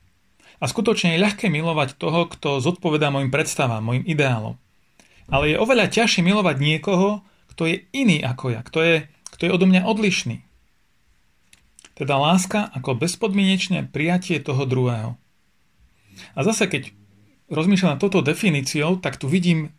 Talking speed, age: 140 wpm, 40-59